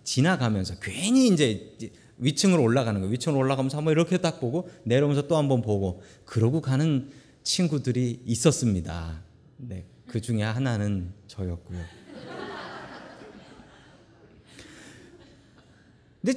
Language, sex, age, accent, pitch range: Korean, male, 30-49, native, 110-175 Hz